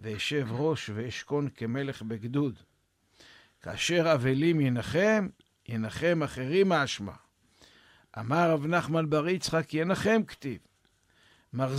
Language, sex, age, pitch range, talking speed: Hebrew, male, 60-79, 115-165 Hz, 95 wpm